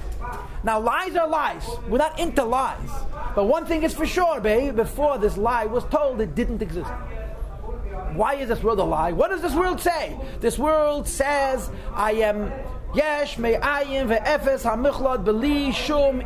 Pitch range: 240-300 Hz